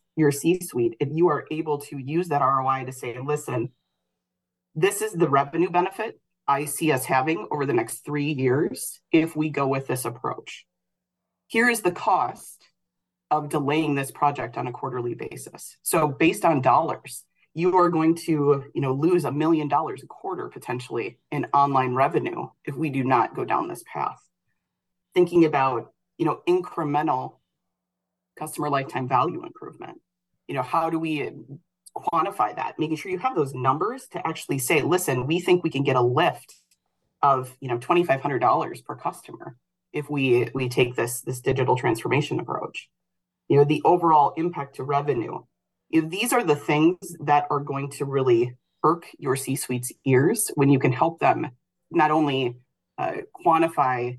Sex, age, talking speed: female, 30-49, 165 wpm